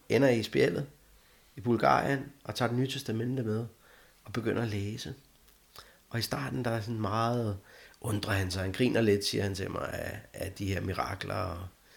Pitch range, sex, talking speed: 105-130 Hz, male, 180 wpm